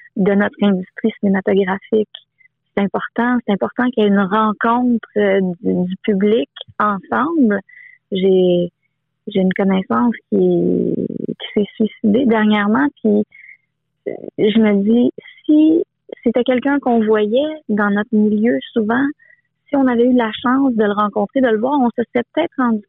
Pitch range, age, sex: 200-245 Hz, 30-49, female